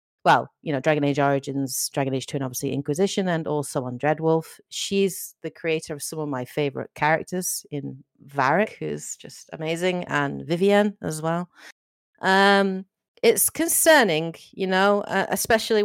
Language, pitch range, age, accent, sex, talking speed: English, 140-175 Hz, 40-59, British, female, 155 wpm